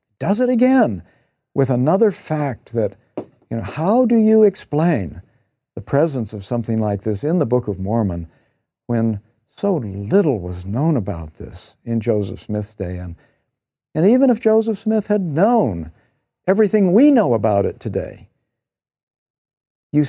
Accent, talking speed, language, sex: American, 150 wpm, English, male